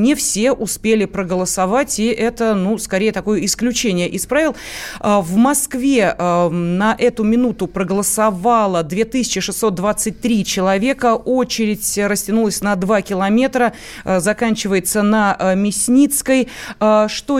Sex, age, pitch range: female, 30-49, 200-245 Hz